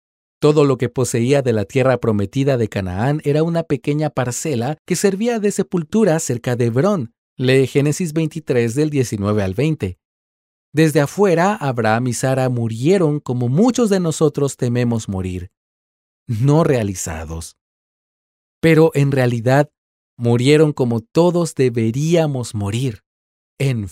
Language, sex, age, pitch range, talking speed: Spanish, male, 40-59, 110-155 Hz, 130 wpm